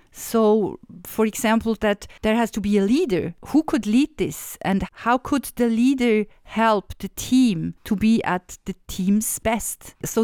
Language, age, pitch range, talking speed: English, 50-69, 195-245 Hz, 170 wpm